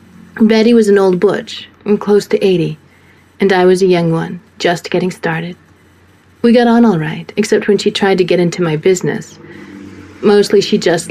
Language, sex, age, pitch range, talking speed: English, female, 30-49, 155-200 Hz, 185 wpm